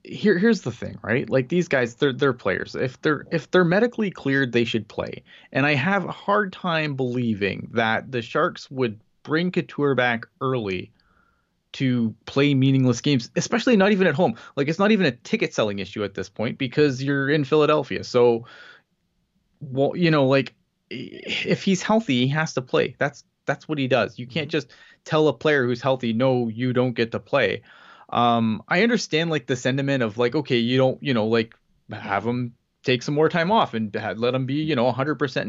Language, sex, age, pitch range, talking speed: English, male, 20-39, 120-160 Hz, 200 wpm